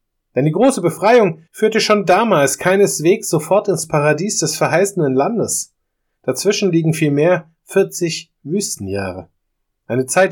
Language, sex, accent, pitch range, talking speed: German, male, German, 125-190 Hz, 120 wpm